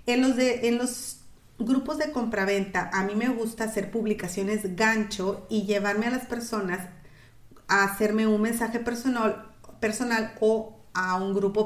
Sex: female